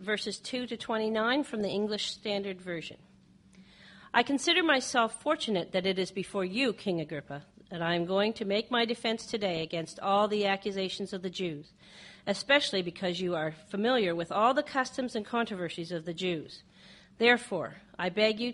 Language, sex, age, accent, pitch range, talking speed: English, female, 40-59, American, 180-225 Hz, 175 wpm